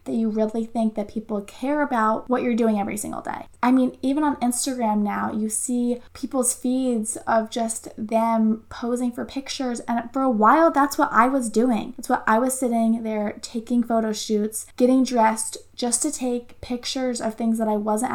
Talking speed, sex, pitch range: 195 wpm, female, 220-245 Hz